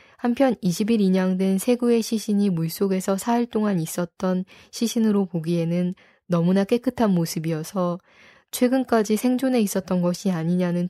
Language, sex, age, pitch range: Korean, female, 20-39, 175-220 Hz